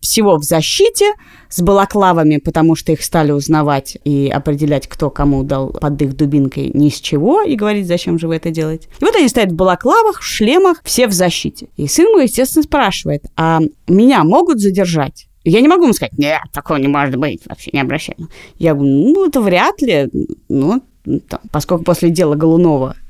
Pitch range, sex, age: 150-210 Hz, female, 20-39